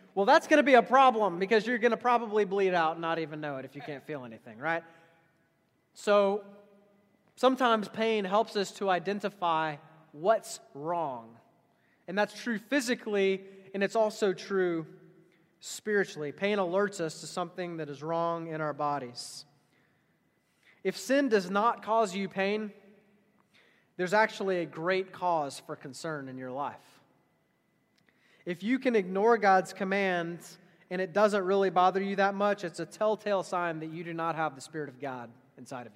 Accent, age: American, 30-49